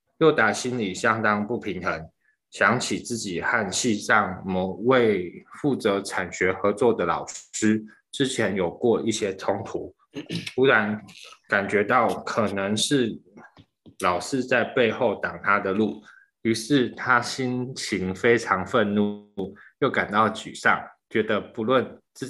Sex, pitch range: male, 95-125 Hz